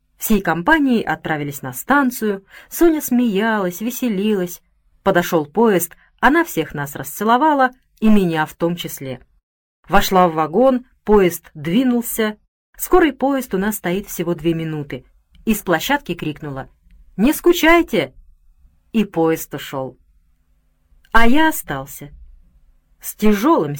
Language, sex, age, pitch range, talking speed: Russian, female, 30-49, 155-230 Hz, 115 wpm